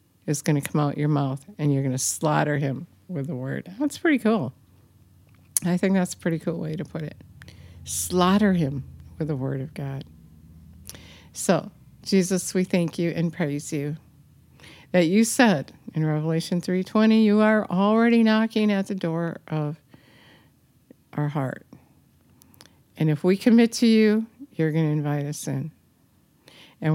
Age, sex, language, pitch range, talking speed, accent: 50-69, female, English, 140-180 Hz, 165 wpm, American